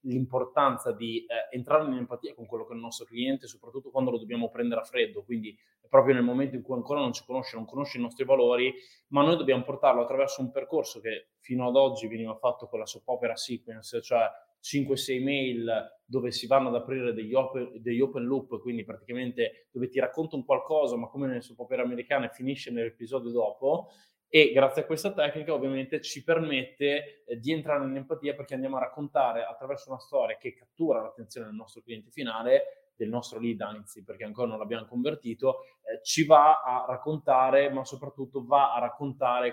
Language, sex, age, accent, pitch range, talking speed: Italian, male, 20-39, native, 120-150 Hz, 195 wpm